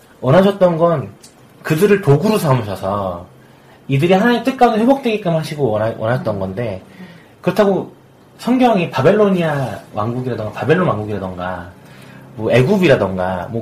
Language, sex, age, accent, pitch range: Korean, male, 30-49, native, 110-170 Hz